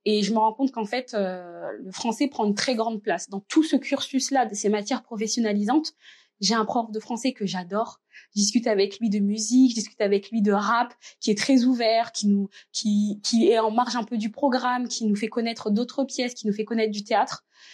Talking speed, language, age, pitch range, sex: 235 wpm, French, 20-39, 210-255 Hz, female